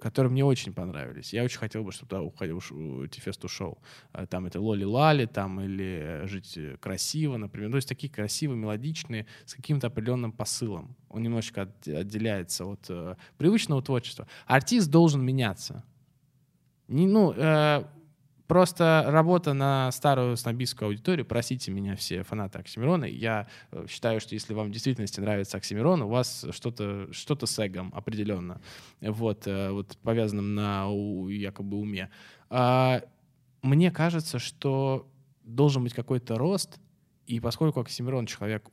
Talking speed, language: 135 wpm, Russian